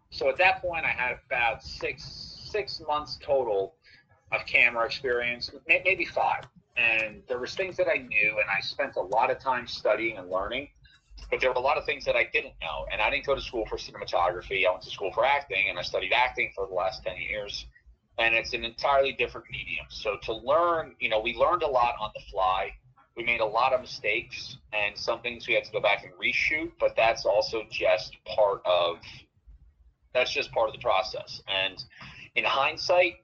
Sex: male